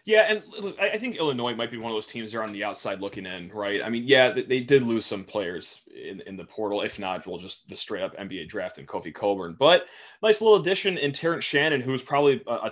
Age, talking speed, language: 30-49, 245 wpm, English